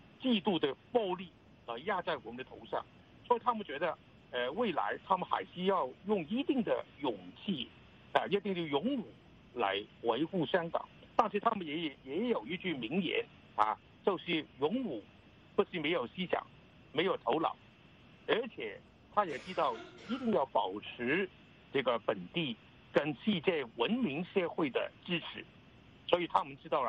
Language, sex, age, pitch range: English, male, 60-79, 155-230 Hz